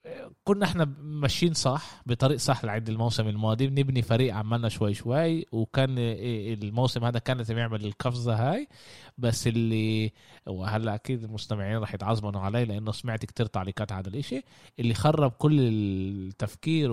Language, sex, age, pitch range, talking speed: Arabic, male, 20-39, 110-140 Hz, 140 wpm